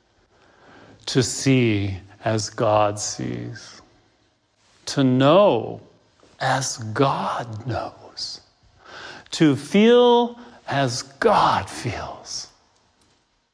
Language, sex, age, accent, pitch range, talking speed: English, male, 50-69, American, 115-160 Hz, 65 wpm